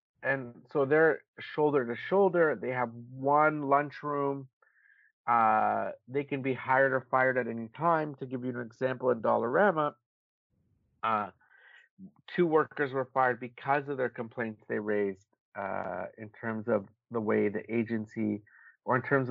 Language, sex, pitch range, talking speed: English, male, 110-135 Hz, 150 wpm